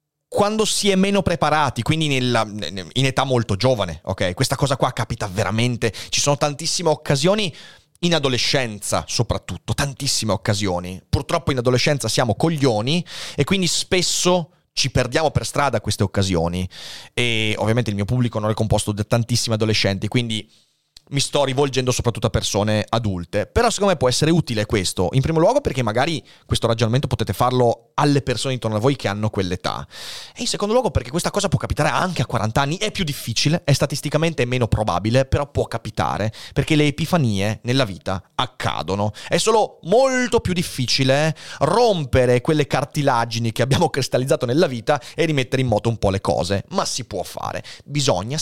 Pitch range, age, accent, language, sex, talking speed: 110-150 Hz, 30-49, native, Italian, male, 170 wpm